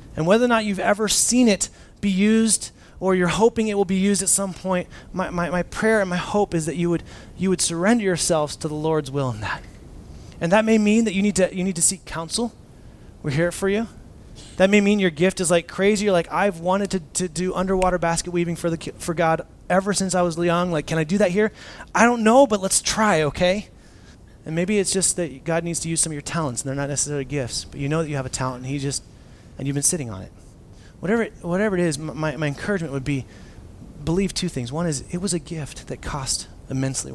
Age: 30-49